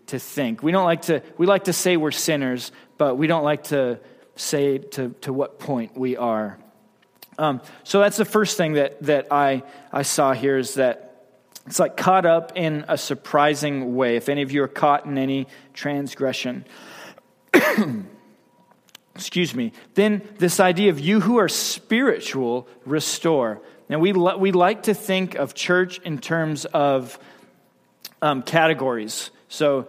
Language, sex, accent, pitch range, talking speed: English, male, American, 145-185 Hz, 160 wpm